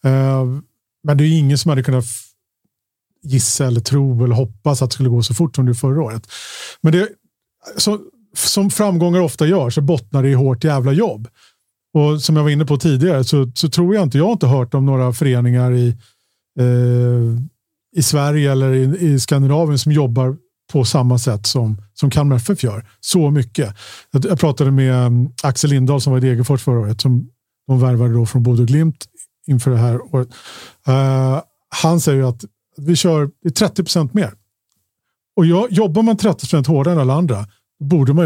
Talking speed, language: 180 wpm, Swedish